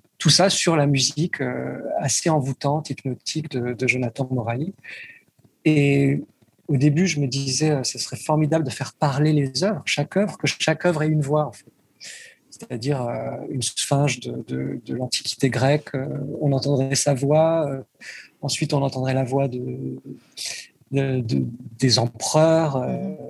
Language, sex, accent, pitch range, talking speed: French, male, French, 130-160 Hz, 145 wpm